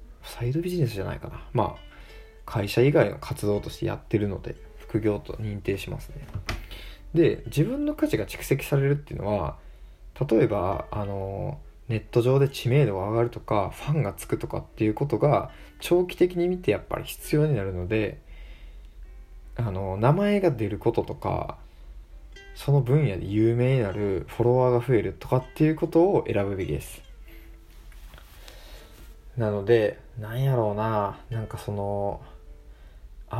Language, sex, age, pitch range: Japanese, male, 20-39, 100-130 Hz